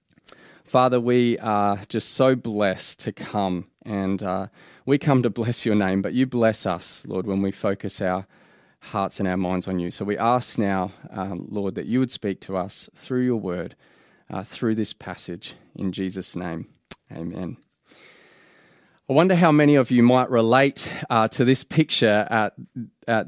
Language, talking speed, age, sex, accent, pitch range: English, 175 wpm, 20-39, male, Australian, 110-130 Hz